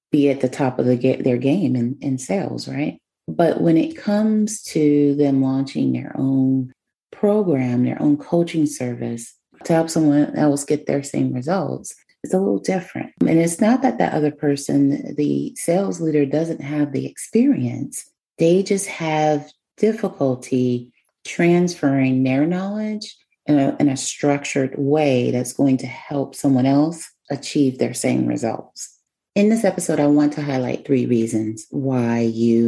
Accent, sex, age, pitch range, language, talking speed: American, female, 30-49, 130-160 Hz, English, 160 wpm